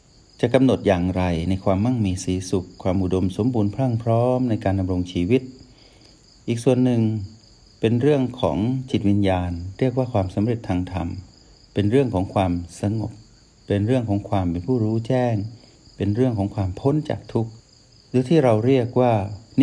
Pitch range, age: 95-125 Hz, 60-79